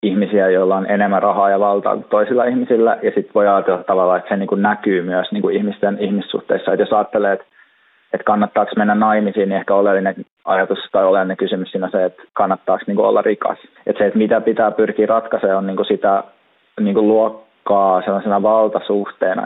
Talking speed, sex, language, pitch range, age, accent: 165 wpm, male, Finnish, 100-120 Hz, 20-39, native